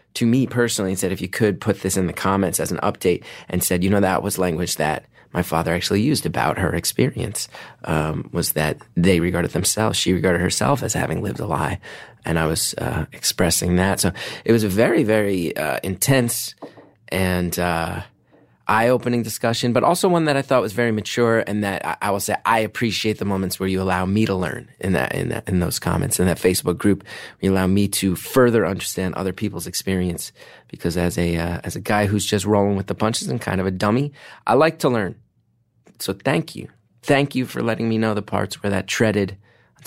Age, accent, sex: 30-49, American, male